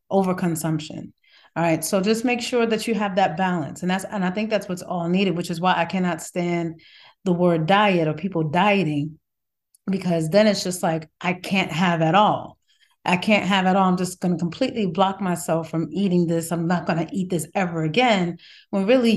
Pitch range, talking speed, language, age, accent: 165-190 Hz, 215 wpm, English, 30-49, American